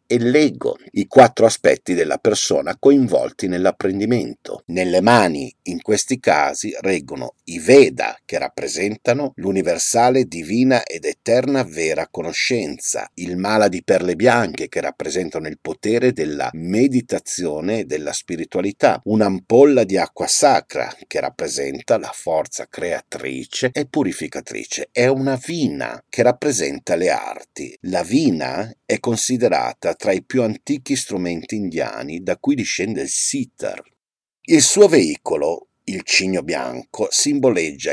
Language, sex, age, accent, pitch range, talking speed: Italian, male, 50-69, native, 105-165 Hz, 125 wpm